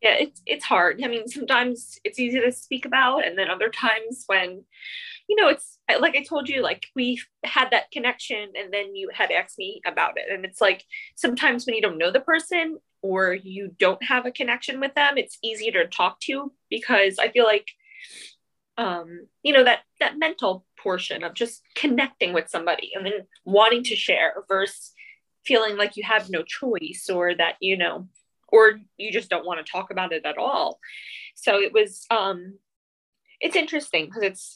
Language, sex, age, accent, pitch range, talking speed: English, female, 20-39, American, 195-280 Hz, 195 wpm